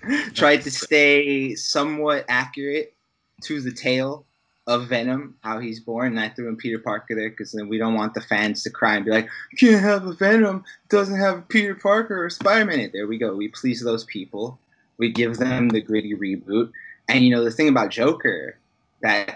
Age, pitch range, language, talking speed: 20-39, 115-150 Hz, English, 210 wpm